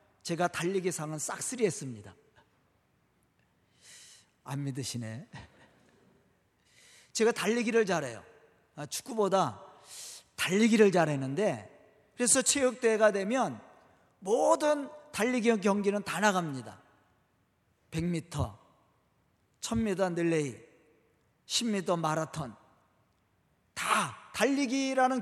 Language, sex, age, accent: Korean, male, 40-59, native